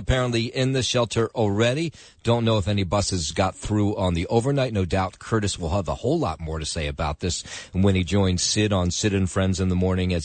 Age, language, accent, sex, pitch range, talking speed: 40-59, English, American, male, 95-120 Hz, 235 wpm